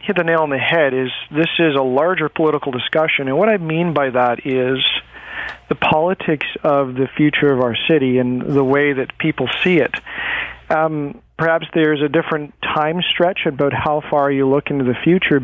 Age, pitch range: 40-59, 135-160 Hz